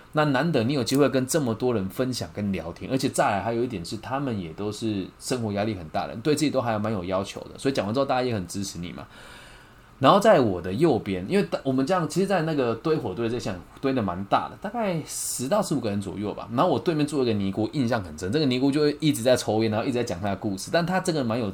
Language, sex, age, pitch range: Chinese, male, 20-39, 100-135 Hz